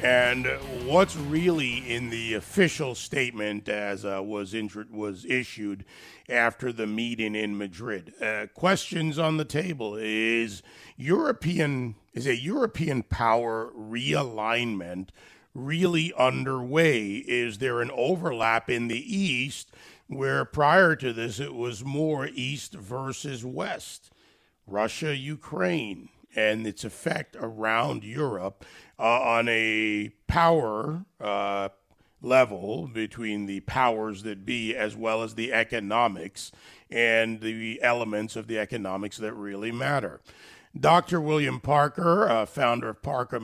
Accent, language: American, English